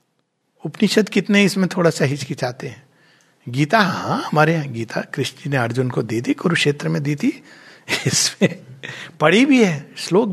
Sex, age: male, 60-79